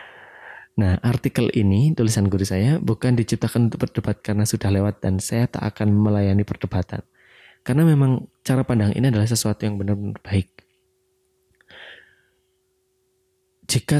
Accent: native